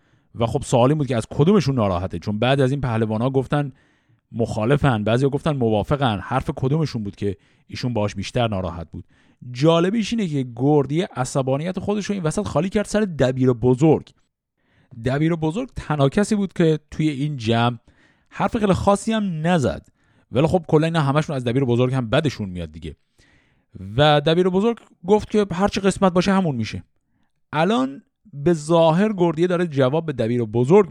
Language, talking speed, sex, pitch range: Persian, 175 wpm, male, 125-190 Hz